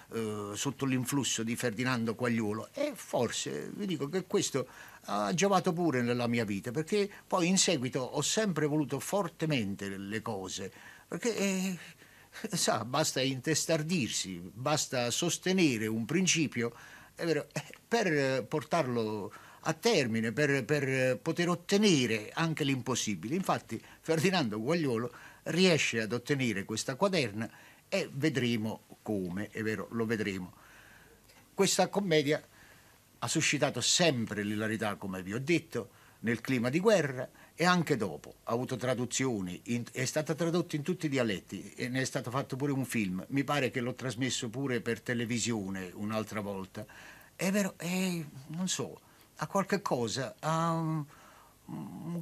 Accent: native